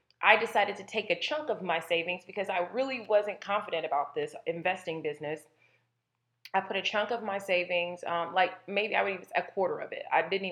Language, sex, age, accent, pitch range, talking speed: English, female, 20-39, American, 165-195 Hz, 210 wpm